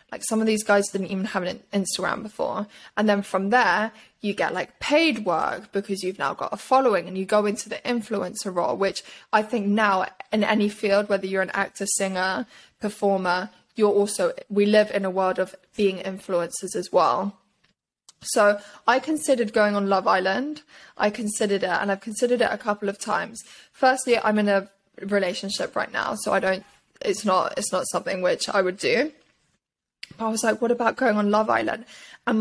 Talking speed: 195 wpm